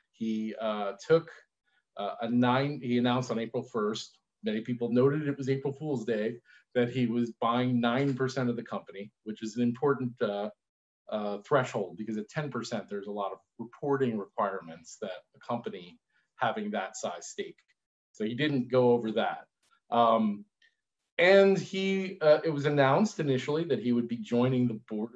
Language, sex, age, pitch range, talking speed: English, male, 40-59, 115-160 Hz, 170 wpm